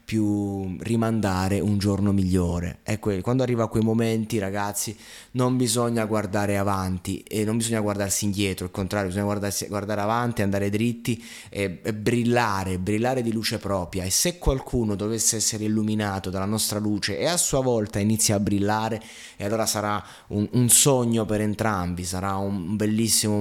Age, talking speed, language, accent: 20-39, 160 wpm, Italian, native